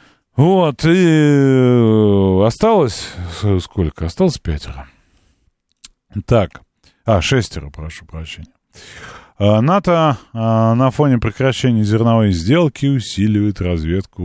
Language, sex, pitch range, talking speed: Russian, male, 90-135 Hz, 90 wpm